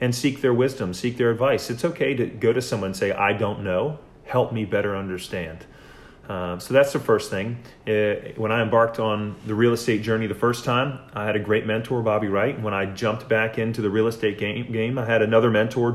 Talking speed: 225 wpm